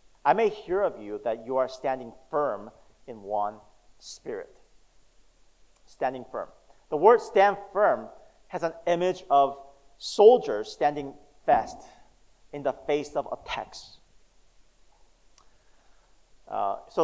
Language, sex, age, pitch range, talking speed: English, male, 40-59, 120-175 Hz, 115 wpm